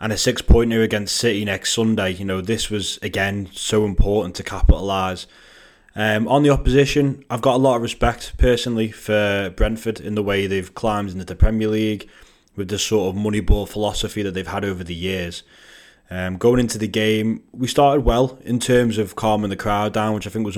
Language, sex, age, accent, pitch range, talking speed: English, male, 20-39, British, 100-115 Hz, 205 wpm